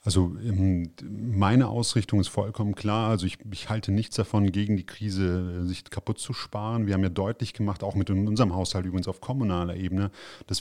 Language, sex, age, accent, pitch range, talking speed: German, male, 30-49, German, 95-105 Hz, 185 wpm